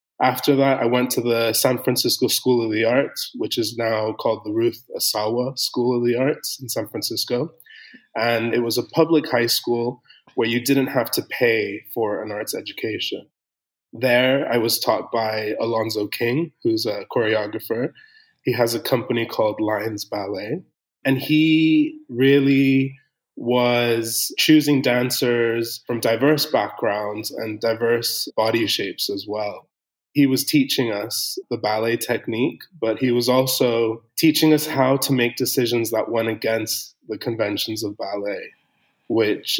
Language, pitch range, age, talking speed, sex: English, 115-135 Hz, 20-39, 150 wpm, male